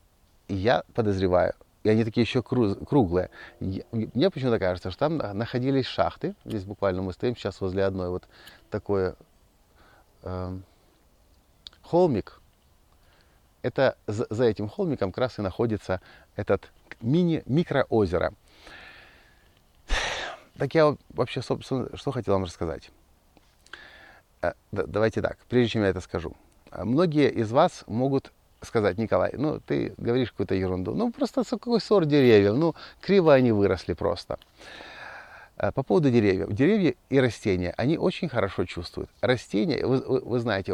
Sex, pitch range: male, 95-130 Hz